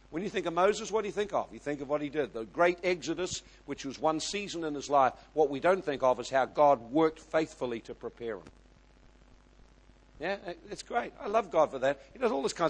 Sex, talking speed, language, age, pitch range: male, 250 wpm, English, 50-69, 155-245 Hz